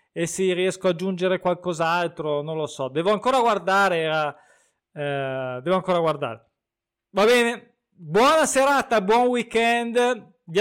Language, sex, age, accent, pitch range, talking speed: Italian, male, 20-39, native, 175-230 Hz, 135 wpm